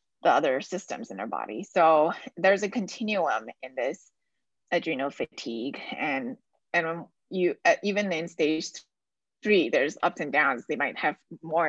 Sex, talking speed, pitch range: female, 150 wpm, 165-230 Hz